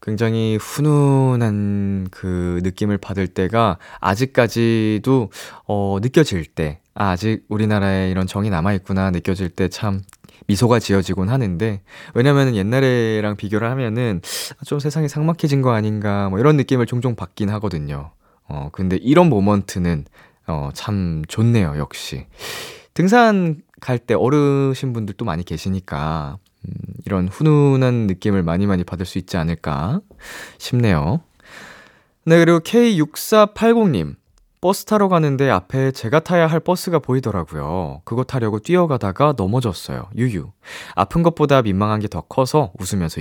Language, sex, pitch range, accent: Korean, male, 95-135 Hz, native